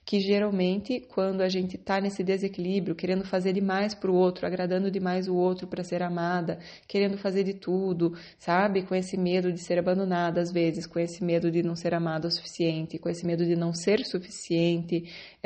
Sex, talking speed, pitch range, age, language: female, 195 wpm, 170-200 Hz, 20-39, Portuguese